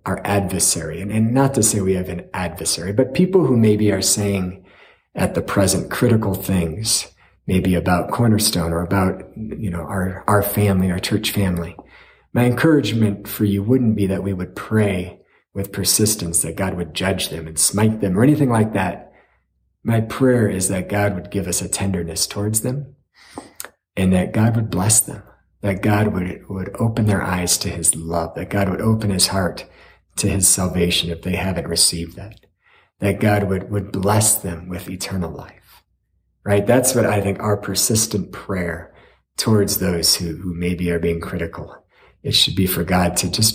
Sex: male